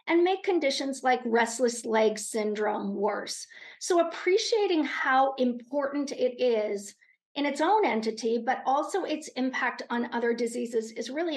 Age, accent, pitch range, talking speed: 50-69, American, 235-300 Hz, 145 wpm